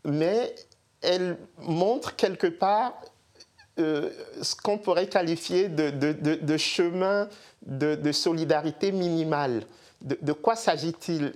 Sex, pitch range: male, 140-180 Hz